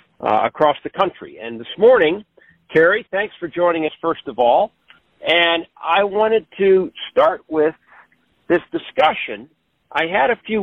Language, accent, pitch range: English, American, 140-200 Hz